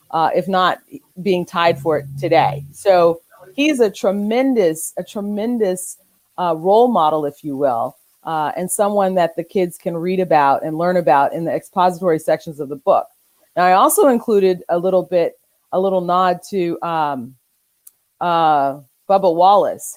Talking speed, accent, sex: 160 wpm, American, female